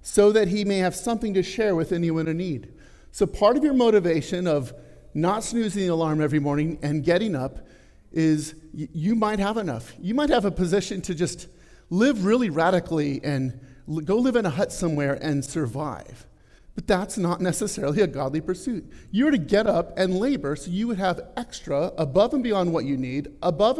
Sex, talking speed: male, 195 wpm